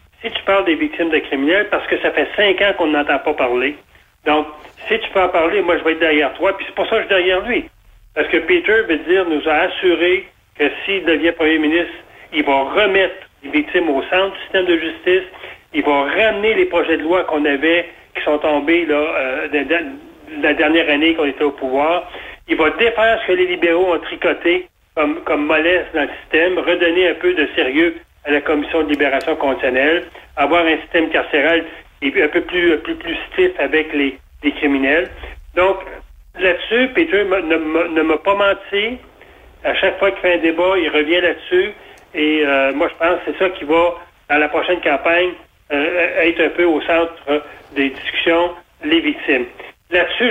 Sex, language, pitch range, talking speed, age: male, French, 155-195 Hz, 200 wpm, 40-59